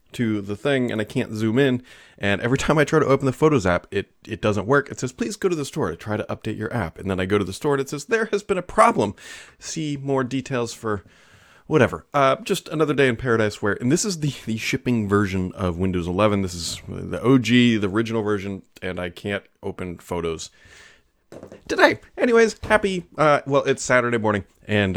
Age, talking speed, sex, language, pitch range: 30-49, 225 wpm, male, English, 105-155 Hz